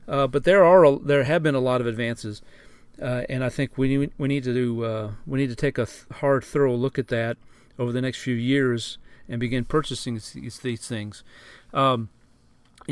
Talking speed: 210 wpm